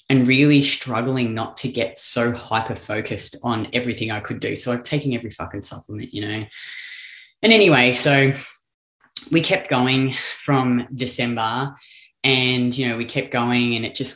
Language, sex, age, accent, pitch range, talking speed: English, female, 20-39, Australian, 120-145 Hz, 160 wpm